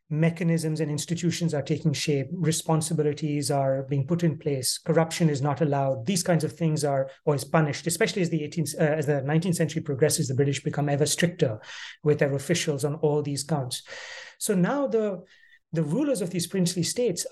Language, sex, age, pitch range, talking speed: English, male, 30-49, 145-175 Hz, 185 wpm